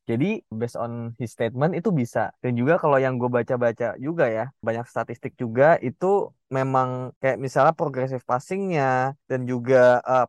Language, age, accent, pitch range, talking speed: Indonesian, 10-29, native, 125-160 Hz, 160 wpm